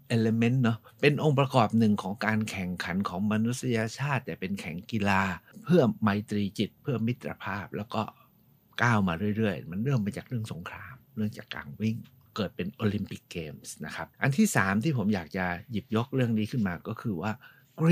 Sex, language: male, Thai